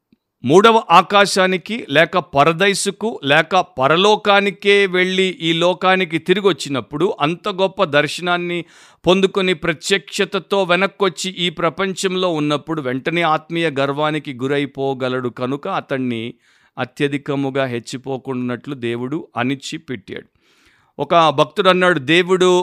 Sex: male